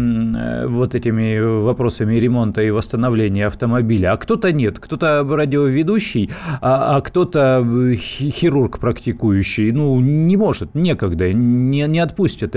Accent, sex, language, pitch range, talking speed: native, male, Russian, 105-135 Hz, 115 wpm